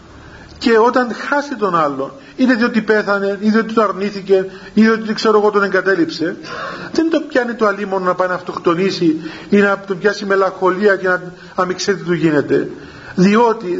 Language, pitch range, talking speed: Greek, 185-225 Hz, 170 wpm